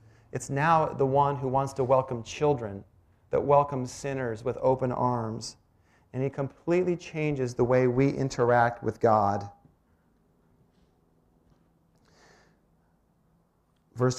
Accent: American